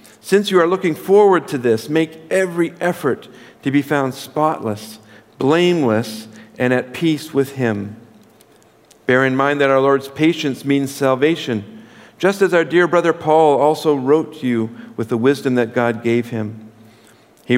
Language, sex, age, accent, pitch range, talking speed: English, male, 50-69, American, 115-150 Hz, 160 wpm